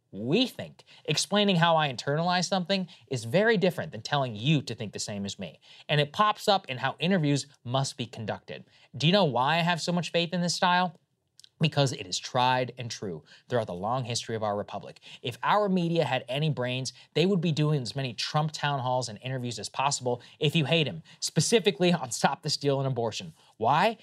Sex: male